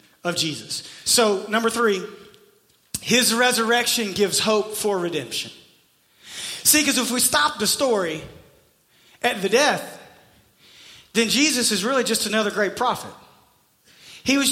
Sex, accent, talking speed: male, American, 130 wpm